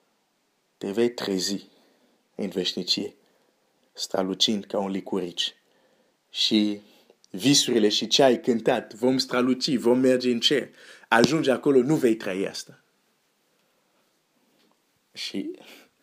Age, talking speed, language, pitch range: 50-69, 105 wpm, Romanian, 105-150 Hz